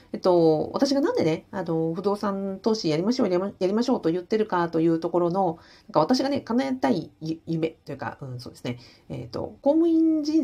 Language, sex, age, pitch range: Japanese, female, 40-59, 155-245 Hz